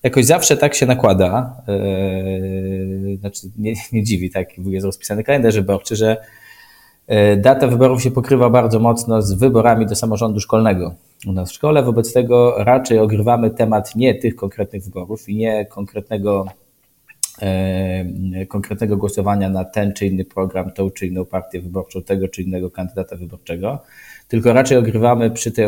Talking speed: 150 wpm